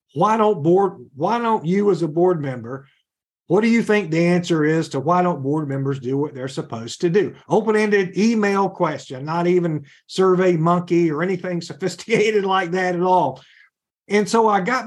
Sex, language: male, English